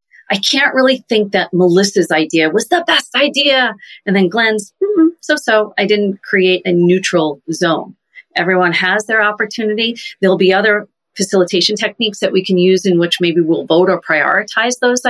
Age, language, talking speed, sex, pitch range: 40-59, English, 175 wpm, female, 170-210 Hz